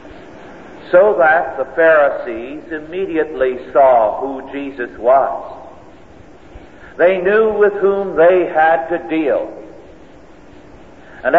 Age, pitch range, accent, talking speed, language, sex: 50-69, 115-170 Hz, American, 95 wpm, English, male